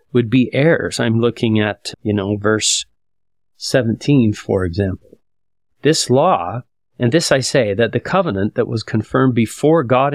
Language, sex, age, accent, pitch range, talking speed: English, male, 40-59, American, 105-130 Hz, 155 wpm